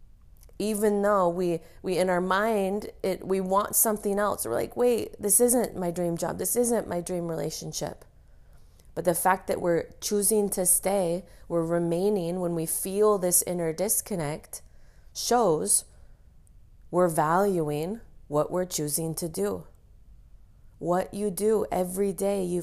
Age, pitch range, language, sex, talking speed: 30-49, 150-190 Hz, English, female, 145 wpm